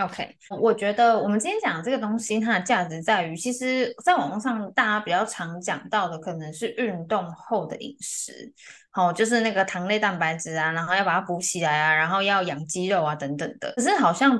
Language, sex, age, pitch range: Chinese, female, 10-29, 175-235 Hz